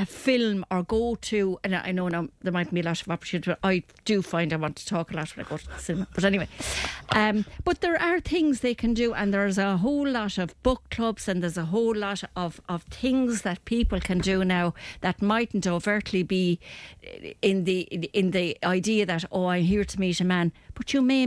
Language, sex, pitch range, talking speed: English, female, 180-225 Hz, 230 wpm